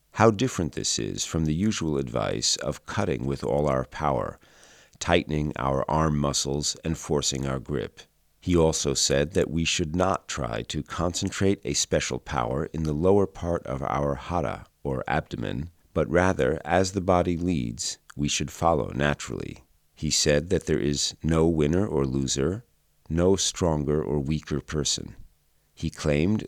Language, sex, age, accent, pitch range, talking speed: English, male, 40-59, American, 70-85 Hz, 160 wpm